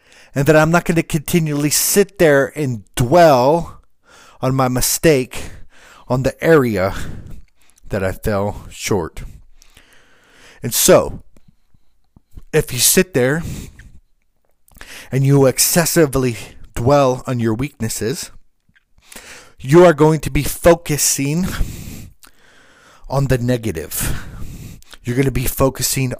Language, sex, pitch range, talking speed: English, male, 115-155 Hz, 110 wpm